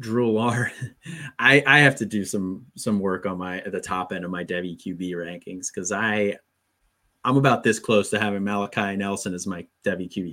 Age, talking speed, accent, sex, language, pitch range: 30-49, 200 wpm, American, male, English, 95-115 Hz